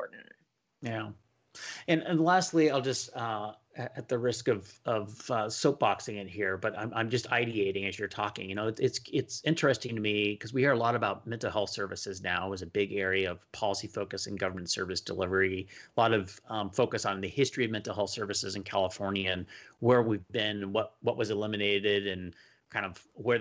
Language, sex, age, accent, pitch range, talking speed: English, male, 30-49, American, 100-130 Hz, 200 wpm